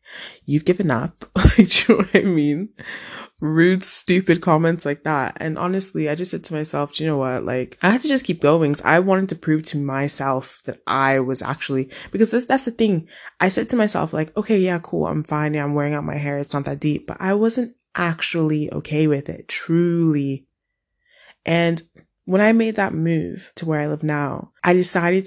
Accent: American